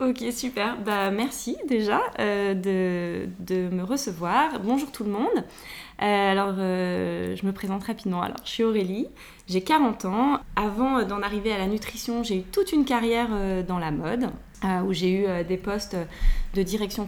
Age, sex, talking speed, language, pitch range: 20-39, female, 185 wpm, French, 185-230 Hz